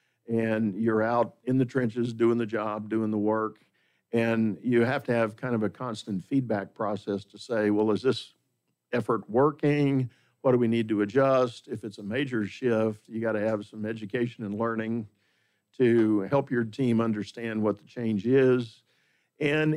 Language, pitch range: English, 110-130 Hz